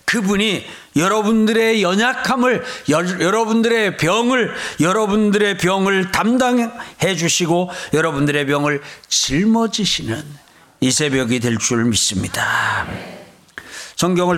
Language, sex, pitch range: Korean, male, 150-230 Hz